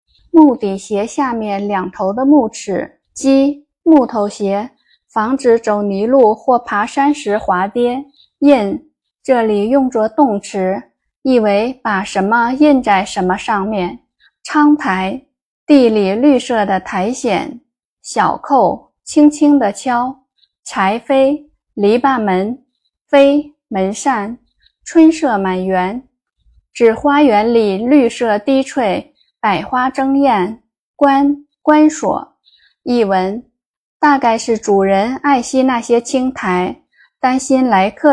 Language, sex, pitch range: Chinese, female, 205-275 Hz